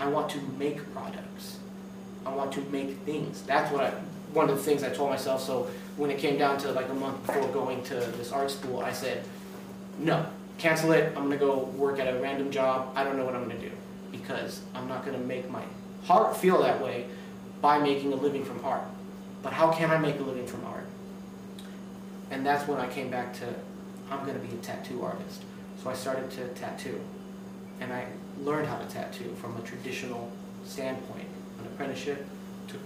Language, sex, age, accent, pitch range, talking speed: English, male, 30-49, American, 135-195 Hz, 200 wpm